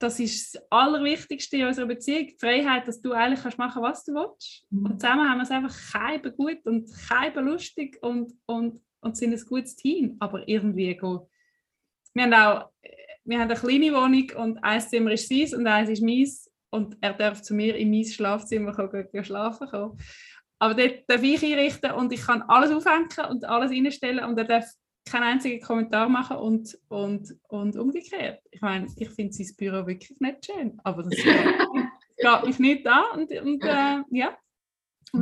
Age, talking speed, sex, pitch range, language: 20-39, 185 wpm, female, 220-275 Hz, English